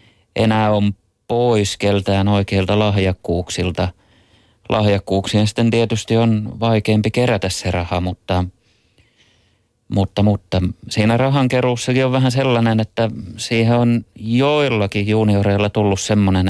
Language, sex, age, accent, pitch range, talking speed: Finnish, male, 30-49, native, 95-110 Hz, 110 wpm